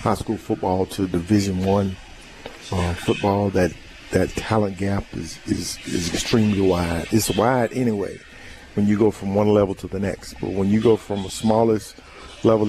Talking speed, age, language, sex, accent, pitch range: 175 wpm, 50-69, English, male, American, 95-110 Hz